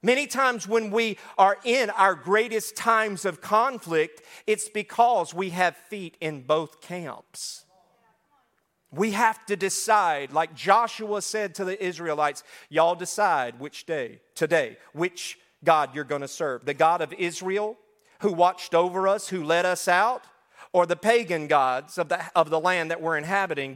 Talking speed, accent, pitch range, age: 160 wpm, American, 165-220 Hz, 40-59